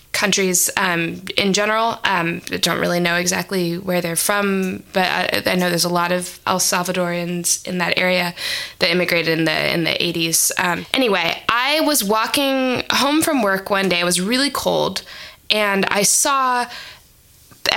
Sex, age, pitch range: female, 20-39, 185-235 Hz